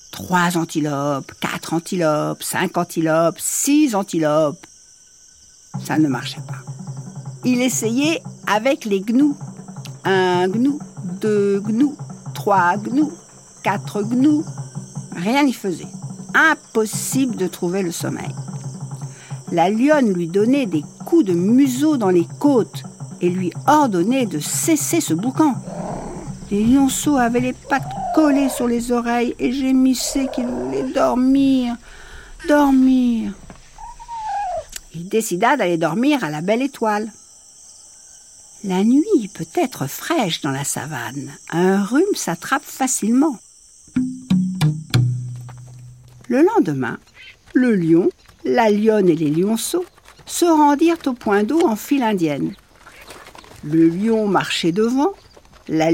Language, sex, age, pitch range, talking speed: French, female, 60-79, 160-265 Hz, 115 wpm